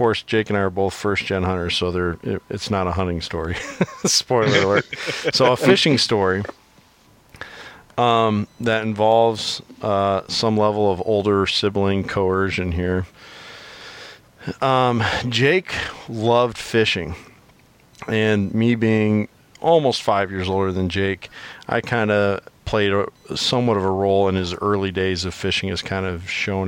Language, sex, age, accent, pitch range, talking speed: English, male, 40-59, American, 95-120 Hz, 145 wpm